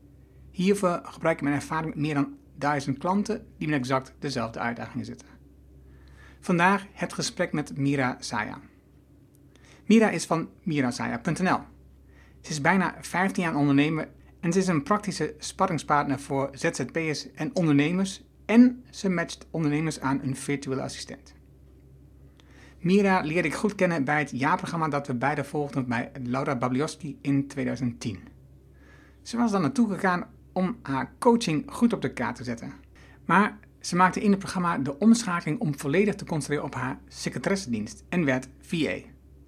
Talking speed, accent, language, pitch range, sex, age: 150 wpm, Dutch, Dutch, 125-180 Hz, male, 60-79